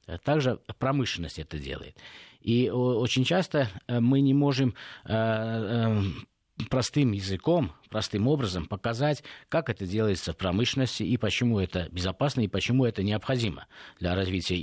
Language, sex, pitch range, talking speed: Russian, male, 105-130 Hz, 125 wpm